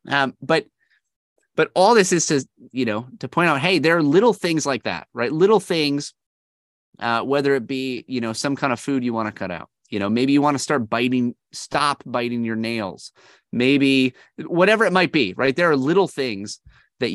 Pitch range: 110-145 Hz